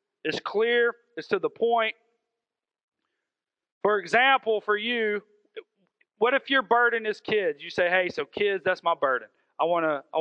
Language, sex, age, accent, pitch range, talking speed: English, male, 40-59, American, 160-235 Hz, 145 wpm